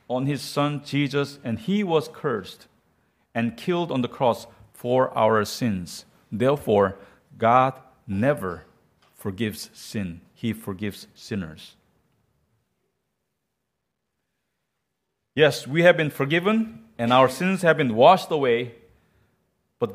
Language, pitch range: English, 120-160 Hz